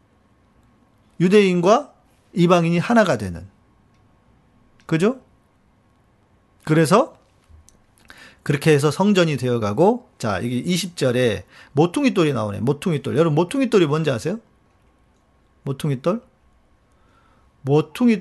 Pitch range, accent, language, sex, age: 120-175 Hz, native, Korean, male, 40-59